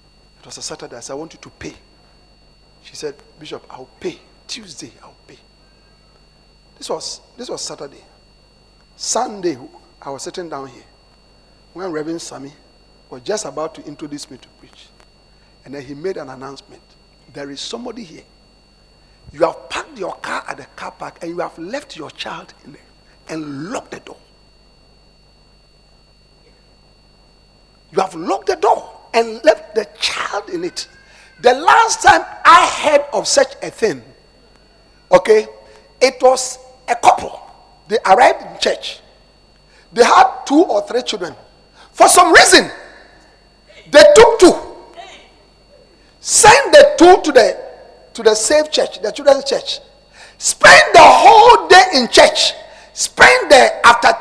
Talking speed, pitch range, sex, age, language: 145 wpm, 230-355 Hz, male, 50-69, English